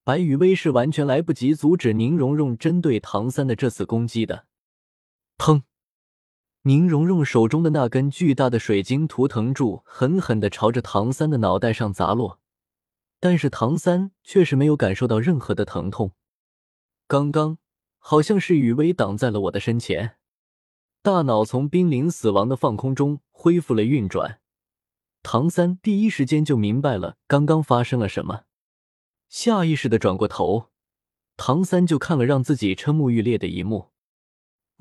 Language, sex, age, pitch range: Chinese, male, 20-39, 115-160 Hz